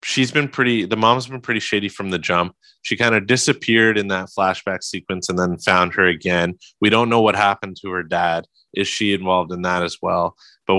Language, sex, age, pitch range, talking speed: English, male, 20-39, 85-105 Hz, 220 wpm